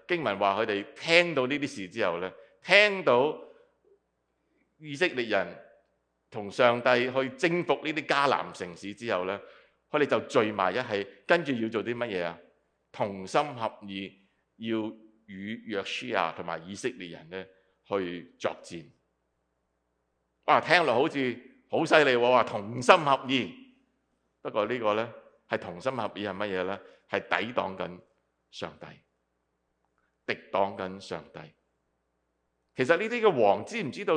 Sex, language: male, English